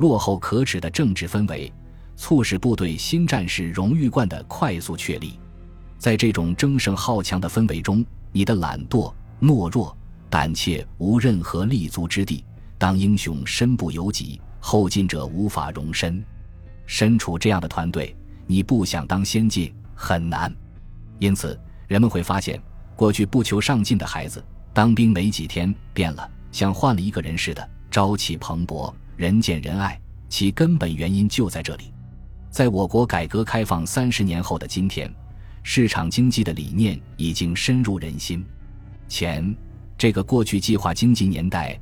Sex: male